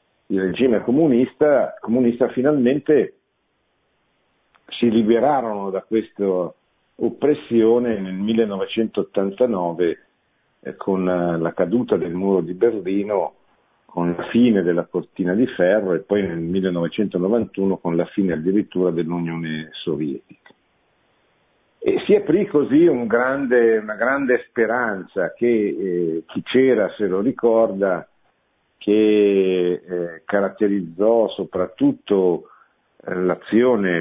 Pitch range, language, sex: 90-115 Hz, Italian, male